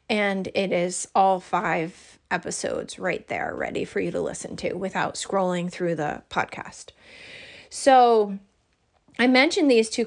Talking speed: 145 wpm